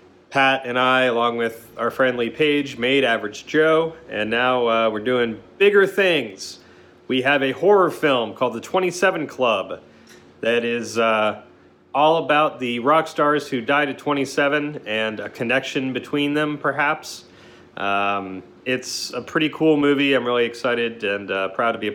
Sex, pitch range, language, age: male, 110-155 Hz, English, 30-49